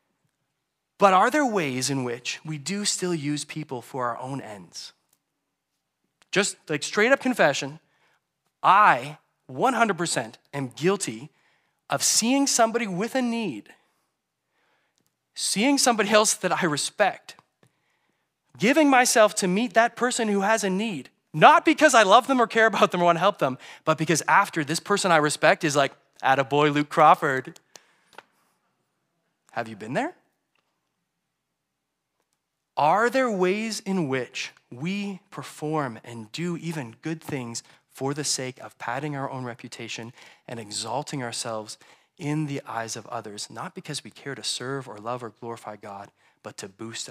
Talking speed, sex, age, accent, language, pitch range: 150 wpm, male, 30-49, American, English, 125-195 Hz